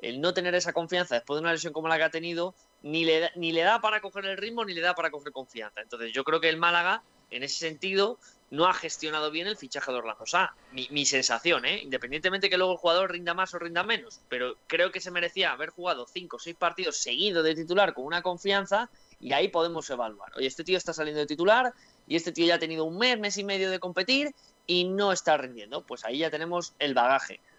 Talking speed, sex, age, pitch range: 250 wpm, male, 20-39, 145-180 Hz